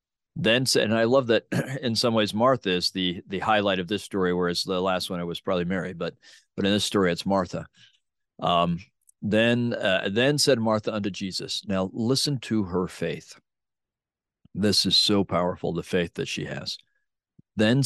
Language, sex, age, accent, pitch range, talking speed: English, male, 40-59, American, 95-130 Hz, 185 wpm